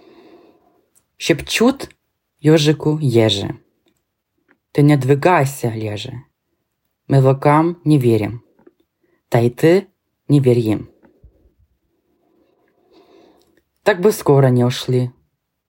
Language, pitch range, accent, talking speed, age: Ukrainian, 120-155 Hz, native, 75 wpm, 20-39